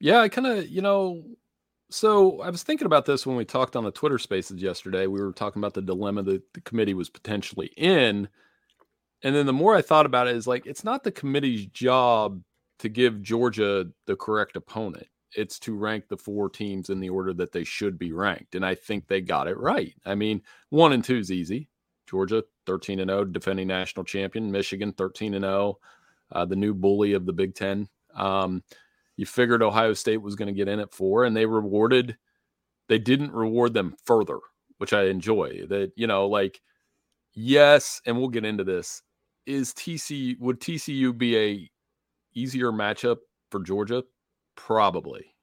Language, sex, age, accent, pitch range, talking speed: English, male, 40-59, American, 100-125 Hz, 190 wpm